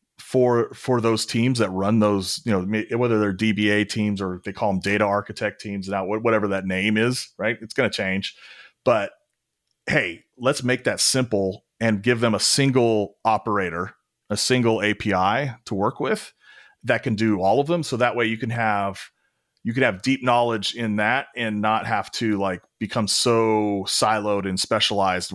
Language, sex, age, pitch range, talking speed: English, male, 30-49, 100-115 Hz, 180 wpm